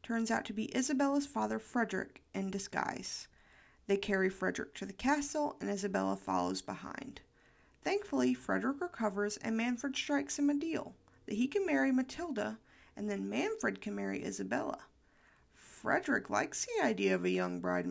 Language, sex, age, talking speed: English, female, 40-59, 160 wpm